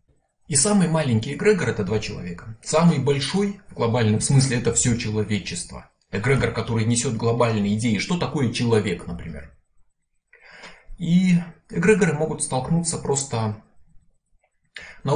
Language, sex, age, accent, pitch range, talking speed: Russian, male, 20-39, native, 115-170 Hz, 120 wpm